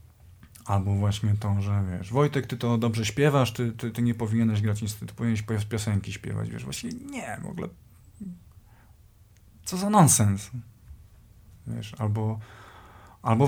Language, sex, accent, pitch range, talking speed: Polish, male, native, 105-120 Hz, 140 wpm